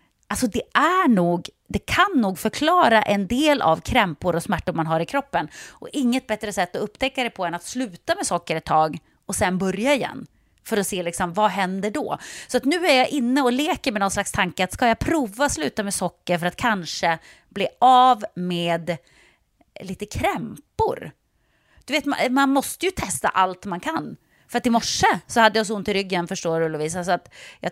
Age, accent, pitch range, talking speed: 30-49, native, 175-245 Hz, 210 wpm